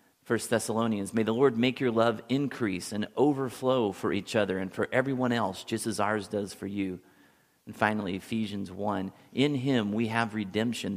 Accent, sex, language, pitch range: American, male, English, 100-125 Hz